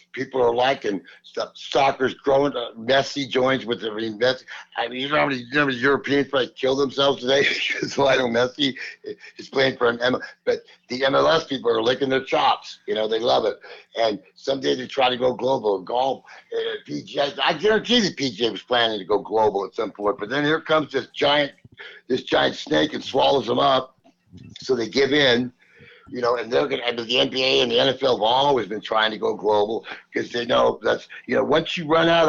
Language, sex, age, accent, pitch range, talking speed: English, male, 60-79, American, 125-160 Hz, 210 wpm